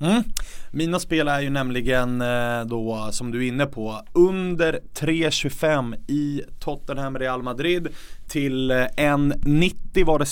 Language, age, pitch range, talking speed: English, 20-39, 115-155 Hz, 130 wpm